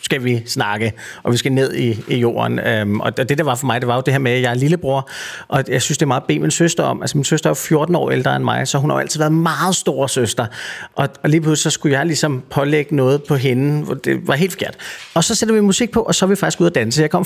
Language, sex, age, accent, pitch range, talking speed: Danish, male, 30-49, native, 130-165 Hz, 310 wpm